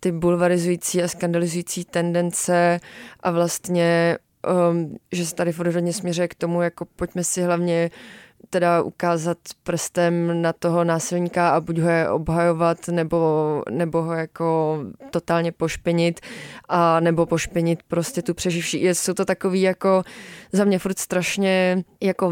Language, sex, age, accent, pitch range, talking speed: Czech, female, 20-39, native, 170-180 Hz, 135 wpm